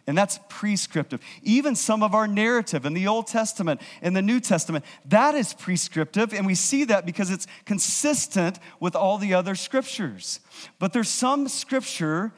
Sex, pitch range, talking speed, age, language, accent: male, 160-230 Hz, 170 wpm, 40-59, English, American